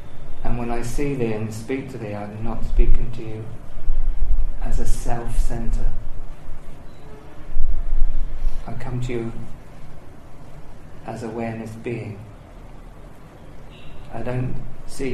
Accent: British